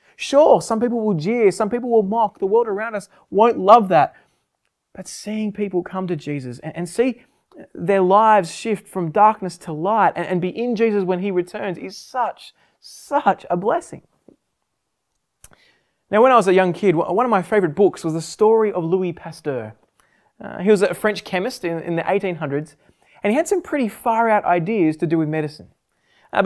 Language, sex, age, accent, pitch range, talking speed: English, male, 20-39, Australian, 180-225 Hz, 195 wpm